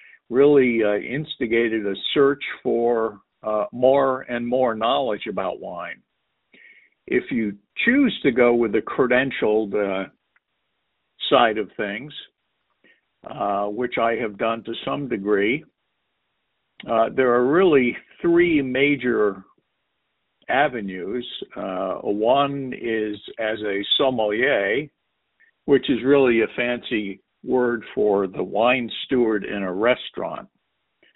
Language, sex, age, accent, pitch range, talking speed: English, male, 60-79, American, 105-130 Hz, 115 wpm